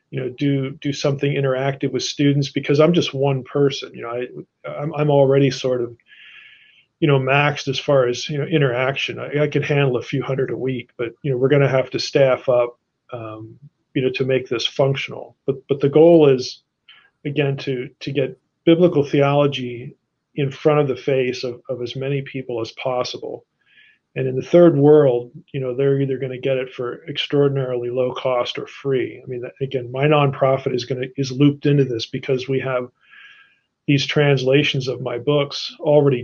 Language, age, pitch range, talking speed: English, 40-59, 130-145 Hz, 195 wpm